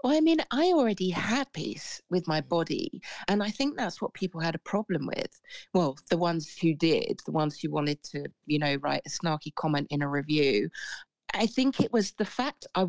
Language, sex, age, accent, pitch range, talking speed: English, female, 40-59, British, 165-235 Hz, 215 wpm